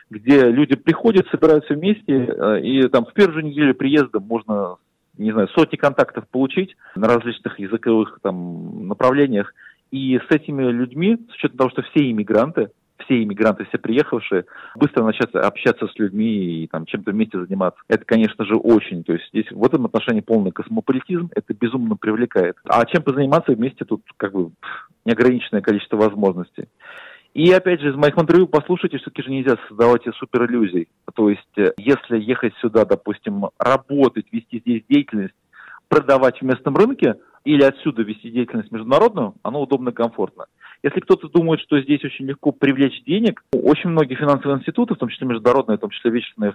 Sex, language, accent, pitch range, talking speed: male, Russian, native, 110-150 Hz, 165 wpm